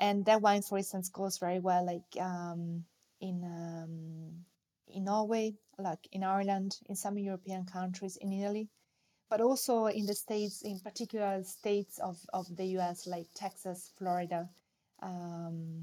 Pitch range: 175-195 Hz